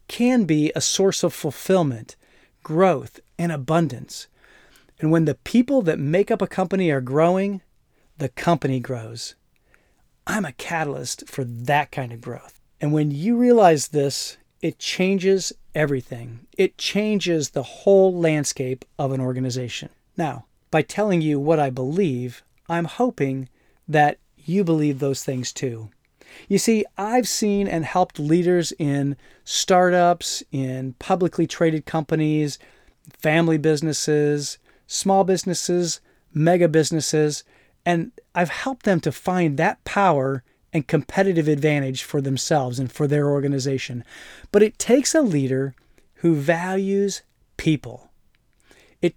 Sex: male